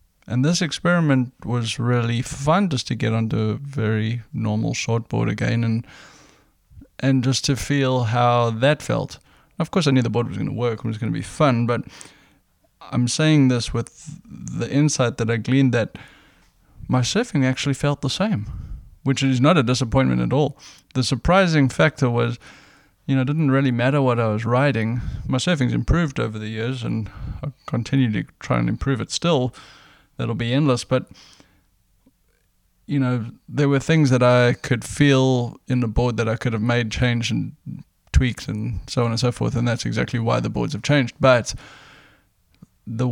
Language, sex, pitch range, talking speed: English, male, 115-135 Hz, 185 wpm